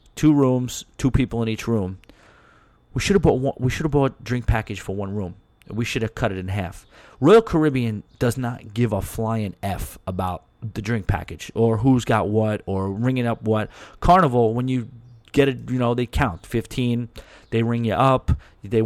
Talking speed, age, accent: 200 wpm, 30-49, American